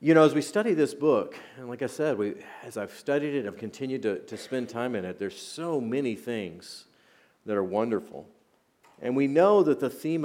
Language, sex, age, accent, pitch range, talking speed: English, male, 40-59, American, 105-125 Hz, 225 wpm